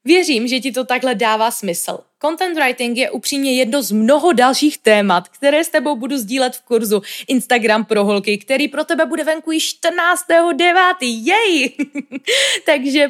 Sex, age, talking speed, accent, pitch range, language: female, 20-39, 160 wpm, native, 220-305 Hz, Czech